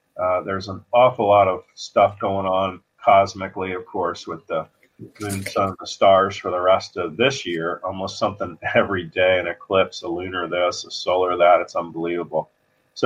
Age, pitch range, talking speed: 40-59, 90-105 Hz, 185 wpm